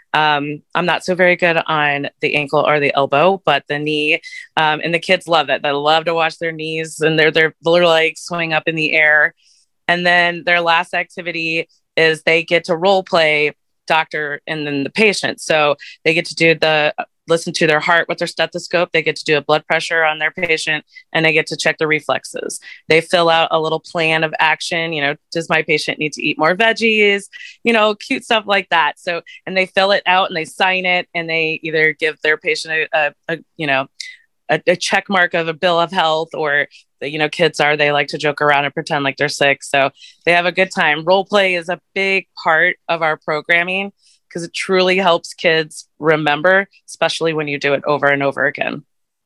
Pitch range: 155-180 Hz